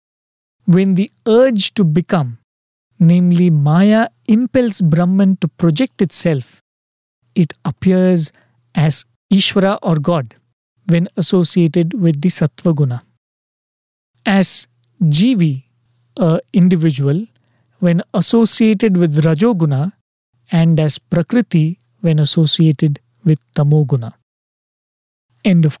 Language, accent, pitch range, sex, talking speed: English, Indian, 145-190 Hz, male, 95 wpm